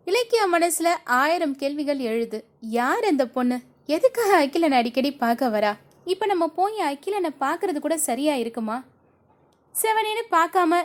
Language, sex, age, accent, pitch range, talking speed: Tamil, female, 20-39, native, 240-330 Hz, 125 wpm